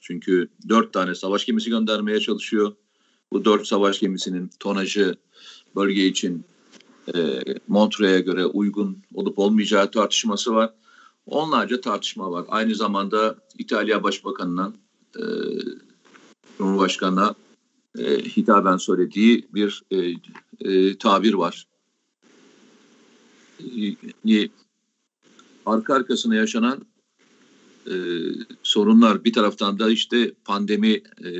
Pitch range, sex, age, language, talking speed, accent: 95-125 Hz, male, 50-69, Turkish, 85 wpm, native